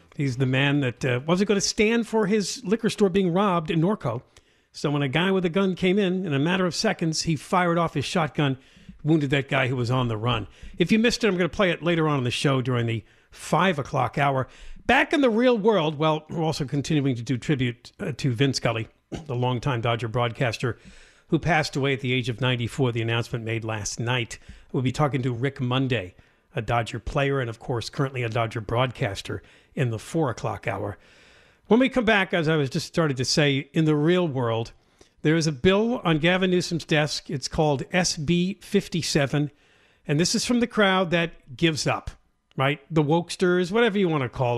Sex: male